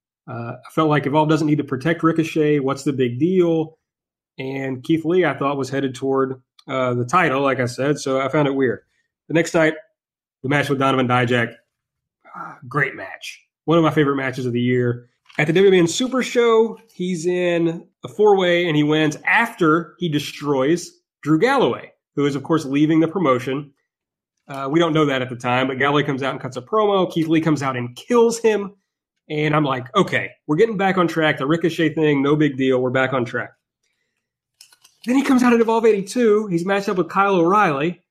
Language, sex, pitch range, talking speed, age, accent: English, male, 135-185 Hz, 205 wpm, 30-49, American